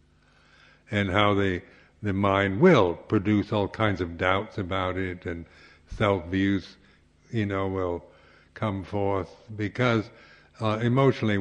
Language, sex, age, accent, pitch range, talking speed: English, male, 60-79, American, 85-110 Hz, 120 wpm